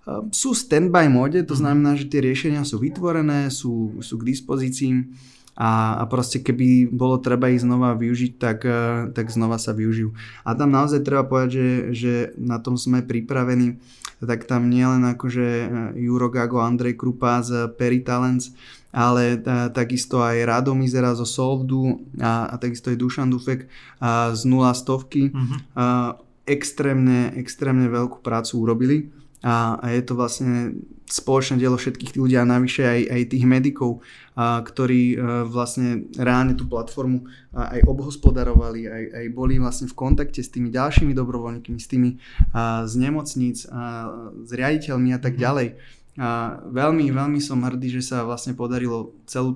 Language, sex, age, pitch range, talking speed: Slovak, male, 20-39, 120-130 Hz, 150 wpm